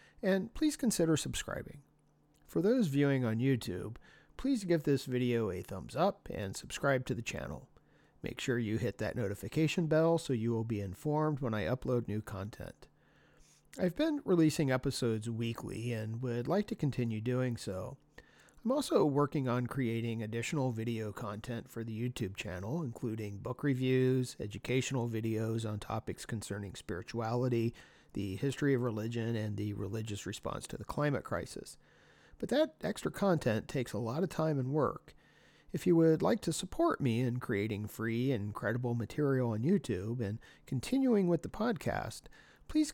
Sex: male